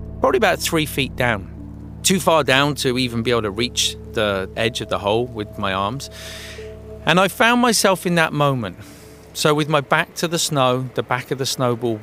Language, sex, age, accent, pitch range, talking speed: English, male, 30-49, British, 105-145 Hz, 205 wpm